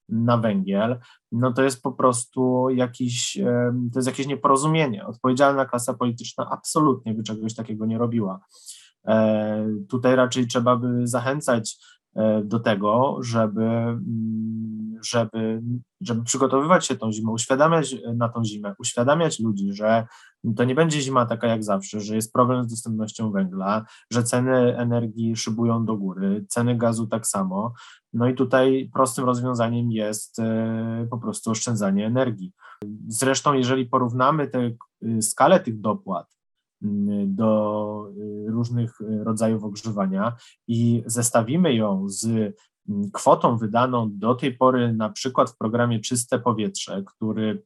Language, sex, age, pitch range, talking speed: English, male, 20-39, 110-130 Hz, 130 wpm